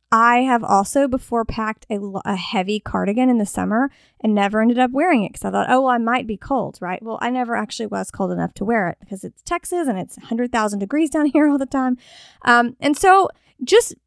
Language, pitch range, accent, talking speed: English, 205-270 Hz, American, 230 wpm